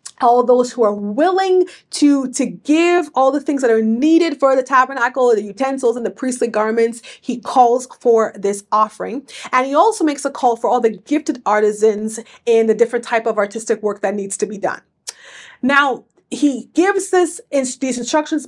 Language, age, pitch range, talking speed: English, 30-49, 225-290 Hz, 185 wpm